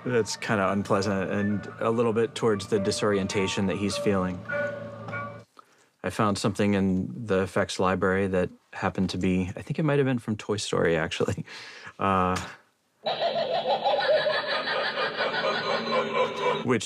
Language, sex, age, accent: Chinese, male, 30-49, American